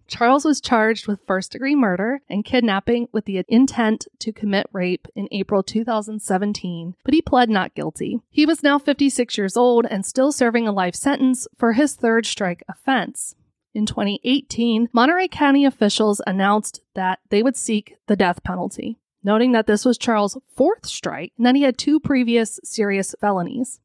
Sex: female